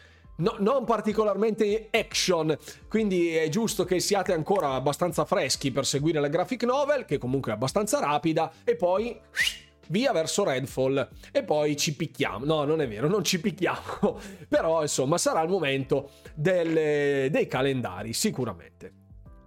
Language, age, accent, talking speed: Italian, 30-49, native, 140 wpm